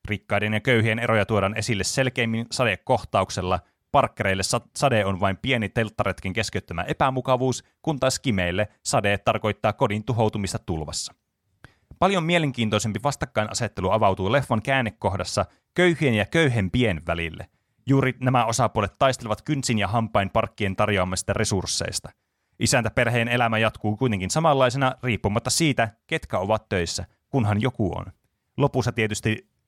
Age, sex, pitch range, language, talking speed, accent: 30-49, male, 100-130 Hz, Finnish, 120 wpm, native